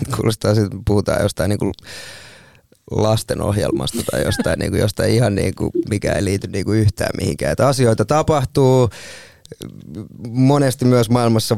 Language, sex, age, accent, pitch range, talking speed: Finnish, male, 20-39, native, 105-120 Hz, 130 wpm